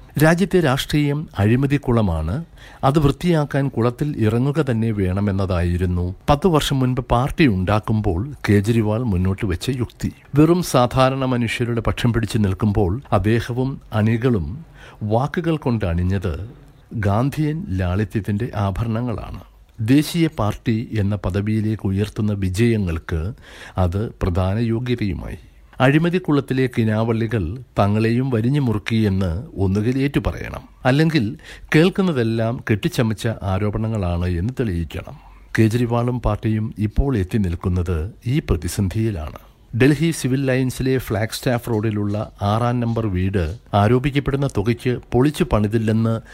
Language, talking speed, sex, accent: Malayalam, 95 wpm, male, native